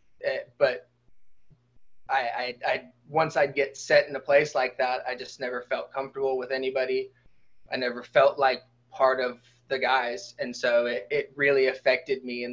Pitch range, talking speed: 125-145 Hz, 175 wpm